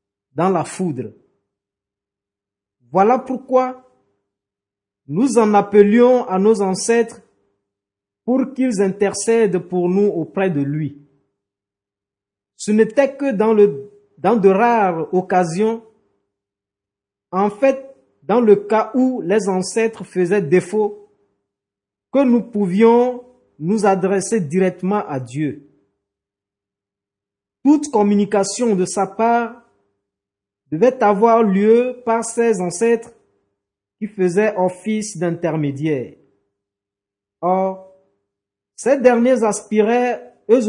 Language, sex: French, male